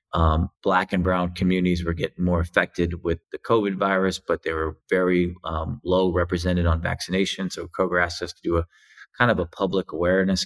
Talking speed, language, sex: 195 wpm, English, male